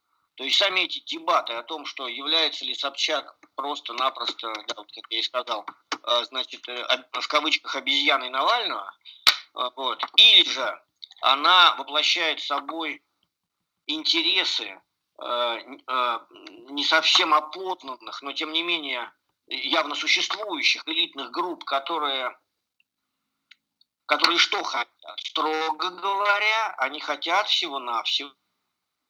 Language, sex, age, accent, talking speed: Russian, male, 50-69, native, 100 wpm